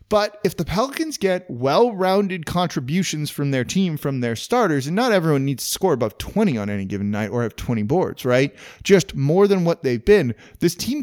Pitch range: 135-195 Hz